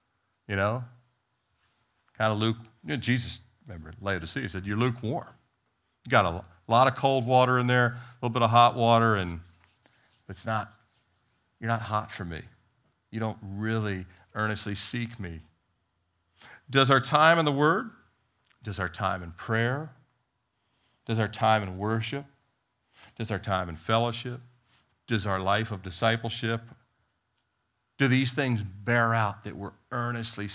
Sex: male